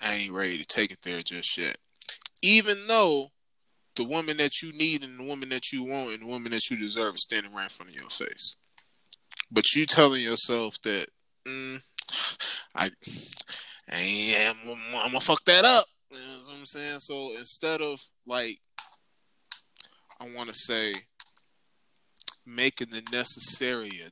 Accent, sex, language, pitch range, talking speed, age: American, male, English, 110-155 Hz, 165 wpm, 20-39